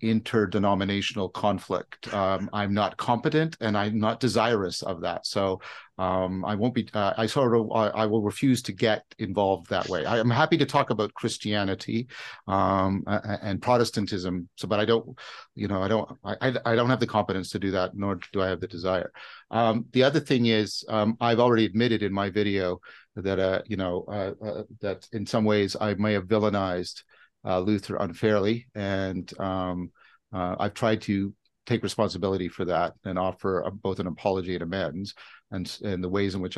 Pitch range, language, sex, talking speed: 95-110 Hz, English, male, 190 wpm